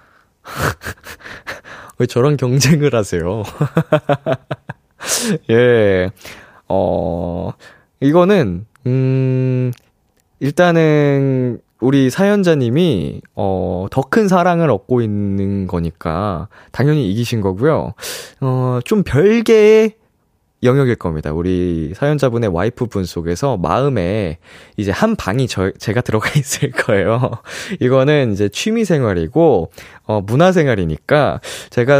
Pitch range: 100-145 Hz